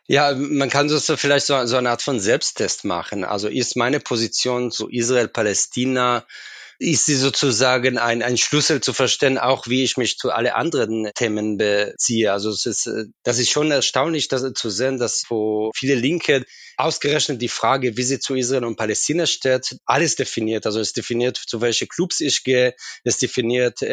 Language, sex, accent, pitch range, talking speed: German, male, German, 115-135 Hz, 175 wpm